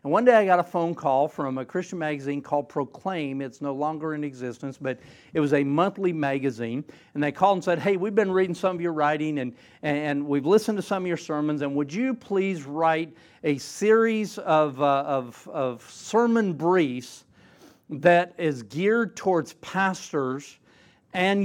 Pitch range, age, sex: 150-200 Hz, 50-69, male